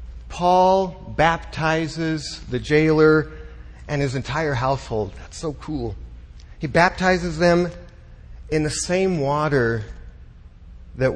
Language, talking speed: English, 100 wpm